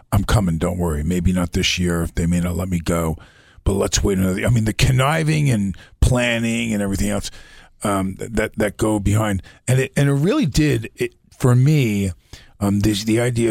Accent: American